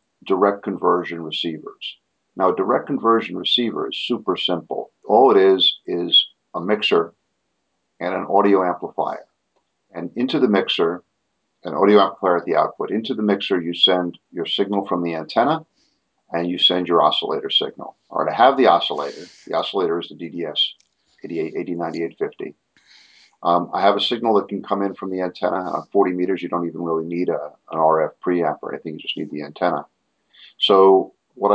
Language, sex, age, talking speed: English, male, 50-69, 175 wpm